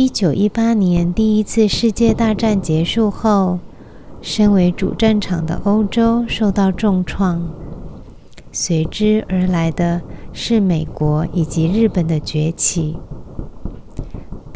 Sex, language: female, Chinese